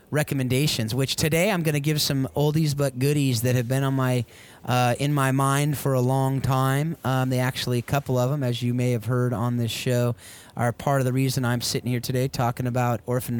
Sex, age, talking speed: male, 30-49, 230 wpm